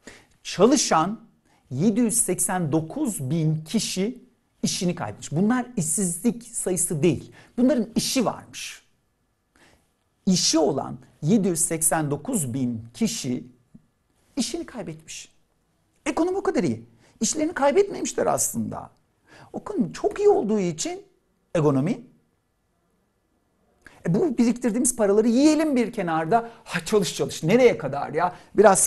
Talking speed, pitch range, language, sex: 100 wpm, 145-240 Hz, Turkish, male